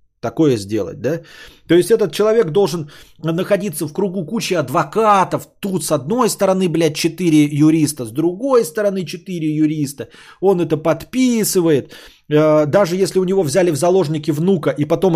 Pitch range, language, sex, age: 135-185 Hz, Bulgarian, male, 30-49